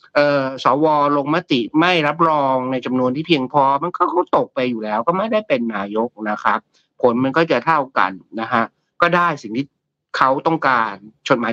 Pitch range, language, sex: 130-180 Hz, Thai, male